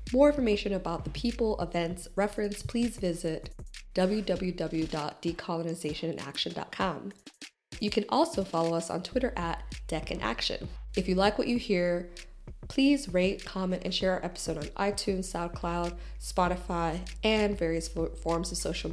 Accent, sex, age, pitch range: American, female, 20-39, 165-205 Hz